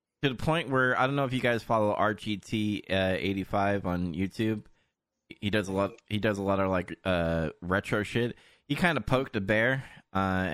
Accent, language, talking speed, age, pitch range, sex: American, English, 210 wpm, 20-39, 100-130 Hz, male